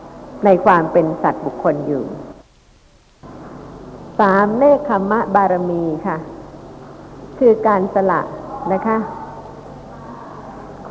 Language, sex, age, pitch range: Thai, female, 60-79, 170-215 Hz